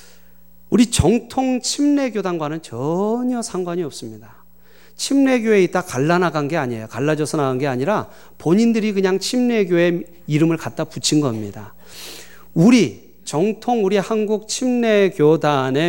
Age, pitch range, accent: 40-59, 130-195 Hz, native